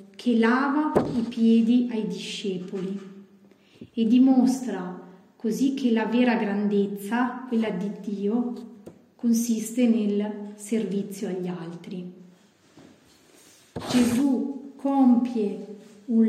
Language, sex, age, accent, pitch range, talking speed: Italian, female, 30-49, native, 195-230 Hz, 90 wpm